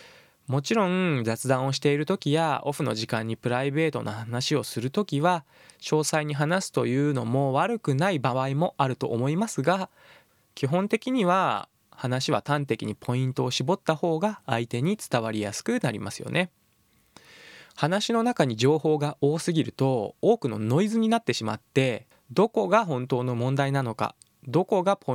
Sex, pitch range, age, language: male, 125-170 Hz, 20-39, Japanese